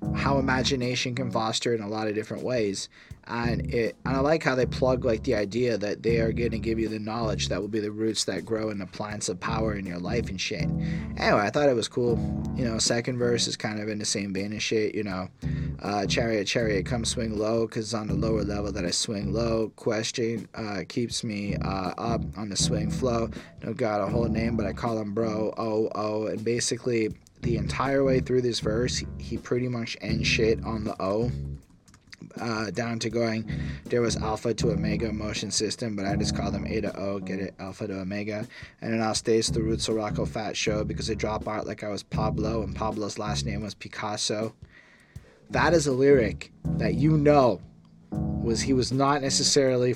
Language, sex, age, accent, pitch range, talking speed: English, male, 20-39, American, 105-120 Hz, 215 wpm